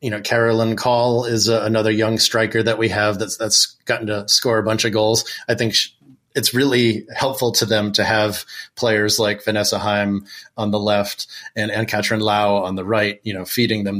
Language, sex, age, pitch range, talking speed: English, male, 30-49, 105-115 Hz, 210 wpm